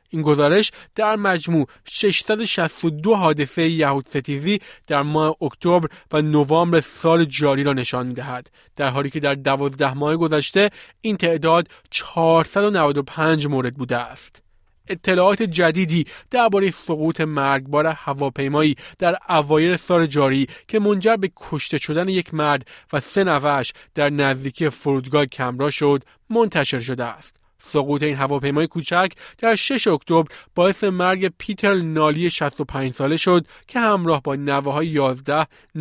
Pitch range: 140-175 Hz